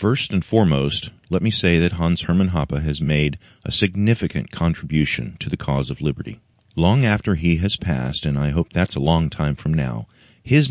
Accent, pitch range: American, 75-105 Hz